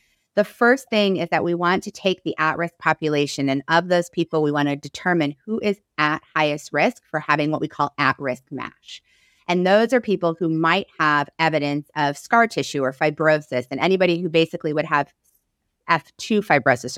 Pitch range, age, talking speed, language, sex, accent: 155-210 Hz, 30-49, 185 wpm, English, female, American